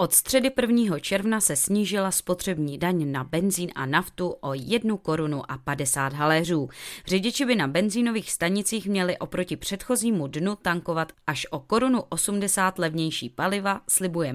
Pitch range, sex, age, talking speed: 150-200 Hz, female, 20-39, 145 wpm